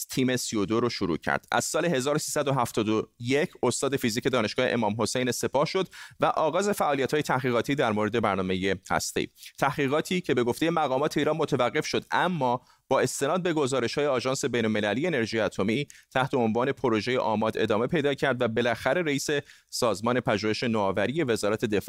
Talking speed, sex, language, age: 155 wpm, male, Persian, 30-49